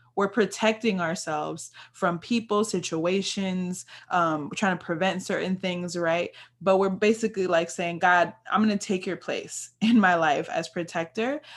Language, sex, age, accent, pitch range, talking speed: English, female, 20-39, American, 165-205 Hz, 155 wpm